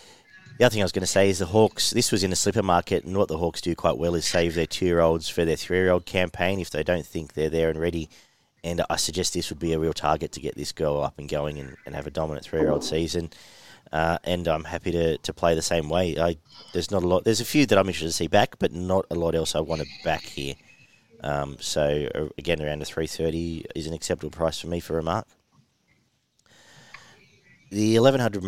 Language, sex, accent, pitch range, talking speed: English, male, Australian, 80-95 Hz, 240 wpm